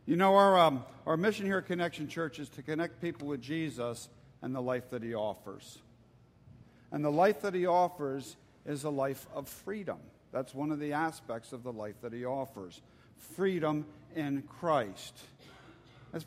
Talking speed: 175 wpm